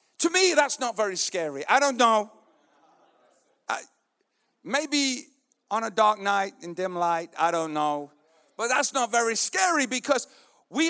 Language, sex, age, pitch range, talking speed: English, male, 50-69, 165-255 Hz, 155 wpm